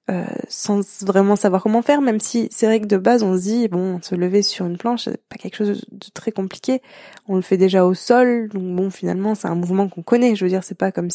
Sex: female